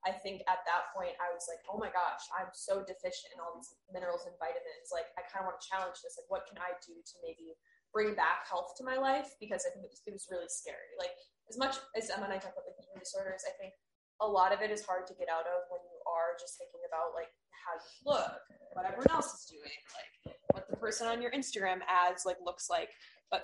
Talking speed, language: 255 wpm, English